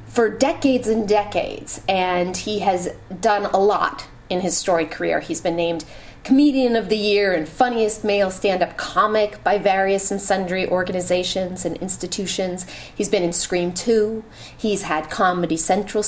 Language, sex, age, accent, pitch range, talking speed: English, female, 30-49, American, 185-250 Hz, 155 wpm